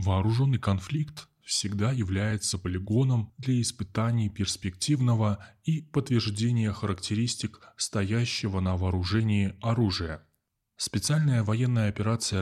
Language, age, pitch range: Russian, 20-39, 95-120 Hz